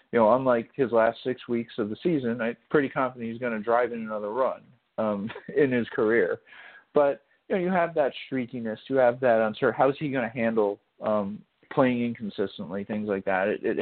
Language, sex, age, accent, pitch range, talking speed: English, male, 40-59, American, 110-135 Hz, 215 wpm